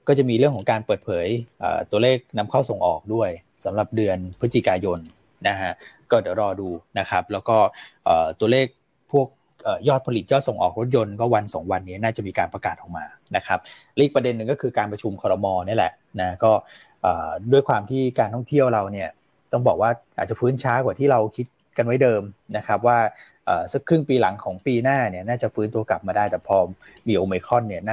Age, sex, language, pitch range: 20-39, male, Thai, 100-130 Hz